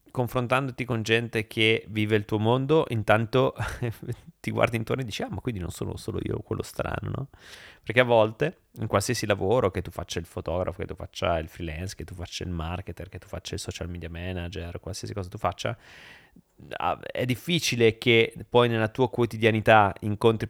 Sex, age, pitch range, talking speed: male, 30-49, 95-120 Hz, 185 wpm